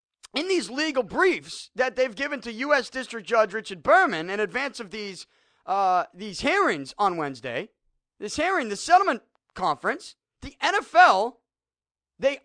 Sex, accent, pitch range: male, American, 210-330 Hz